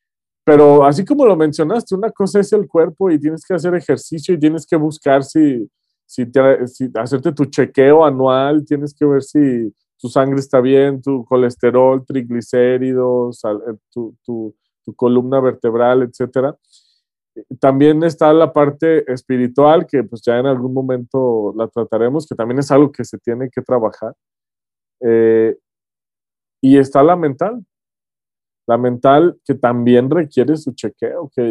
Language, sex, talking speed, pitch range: Spanish, male, 150 wpm, 120-150 Hz